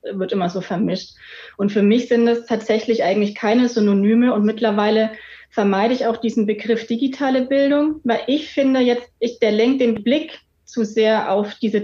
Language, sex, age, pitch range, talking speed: German, female, 30-49, 200-230 Hz, 180 wpm